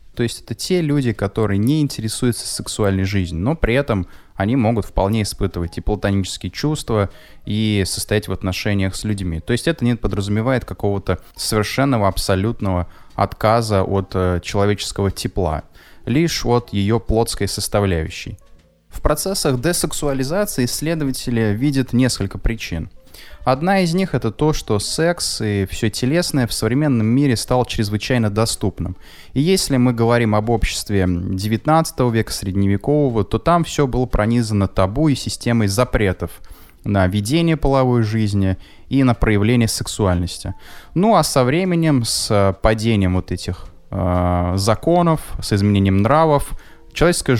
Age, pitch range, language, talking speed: 20-39, 95-130 Hz, Russian, 135 wpm